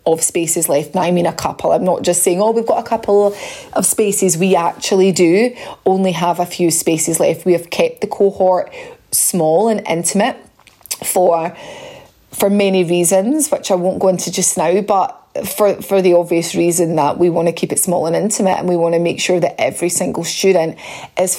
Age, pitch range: 30-49, 175-195 Hz